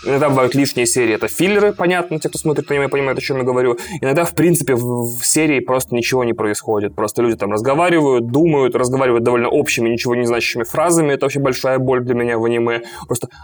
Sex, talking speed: male, 210 wpm